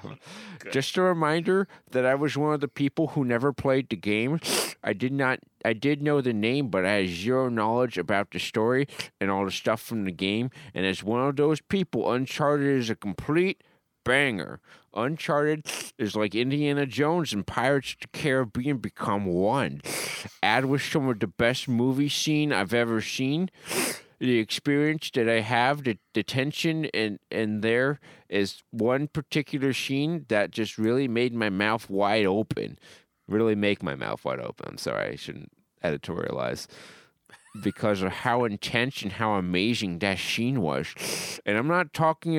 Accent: American